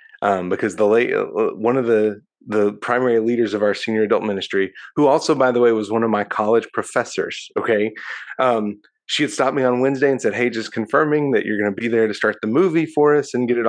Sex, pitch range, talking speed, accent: male, 110-145 Hz, 240 wpm, American